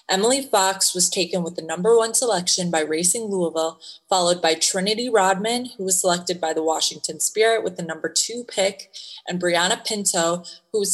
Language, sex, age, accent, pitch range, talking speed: English, female, 20-39, American, 170-215 Hz, 180 wpm